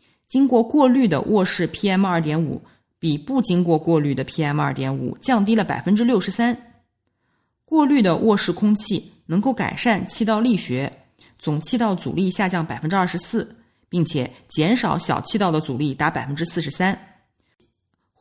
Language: Chinese